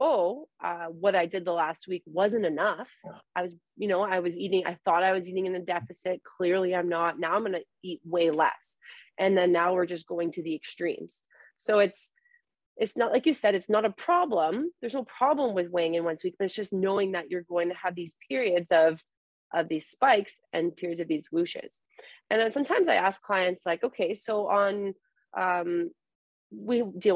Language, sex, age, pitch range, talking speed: English, female, 30-49, 170-210 Hz, 215 wpm